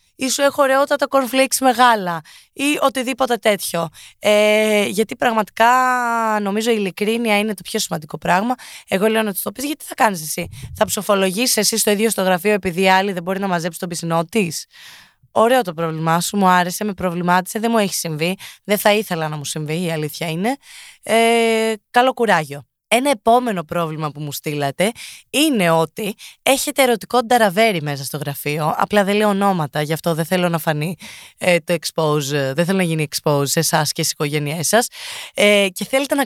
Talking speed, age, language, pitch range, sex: 180 wpm, 20-39, Greek, 170-240 Hz, female